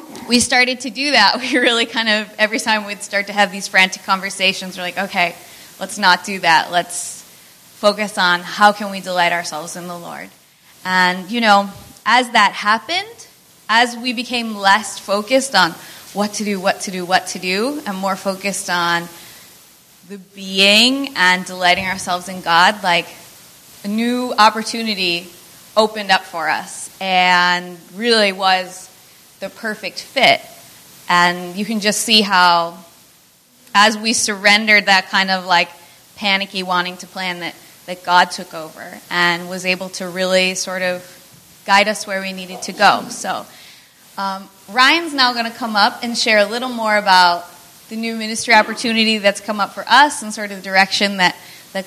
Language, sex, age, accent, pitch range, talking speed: English, female, 20-39, American, 180-215 Hz, 170 wpm